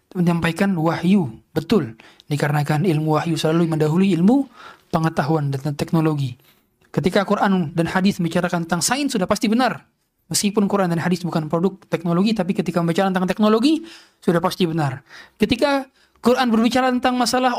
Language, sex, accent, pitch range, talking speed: Indonesian, male, native, 165-220 Hz, 145 wpm